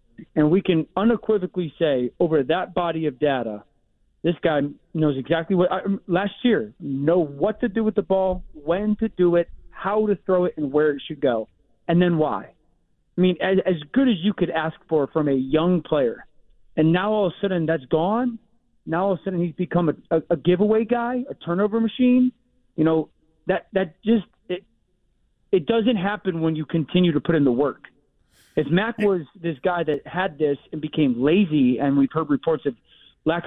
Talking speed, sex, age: 195 wpm, male, 40-59